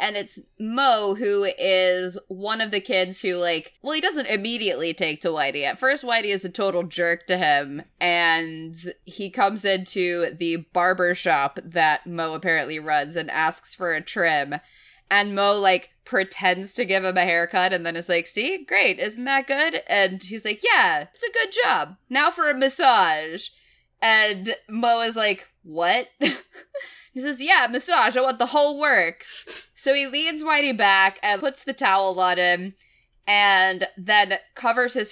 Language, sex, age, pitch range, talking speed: English, female, 20-39, 175-245 Hz, 175 wpm